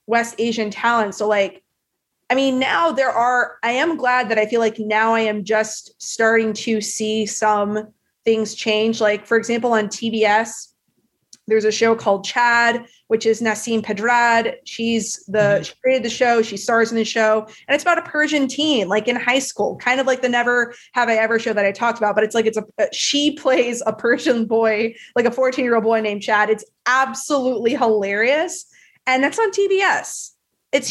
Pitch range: 220-250 Hz